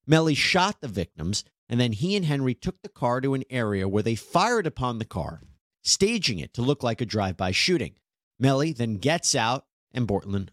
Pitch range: 95-150 Hz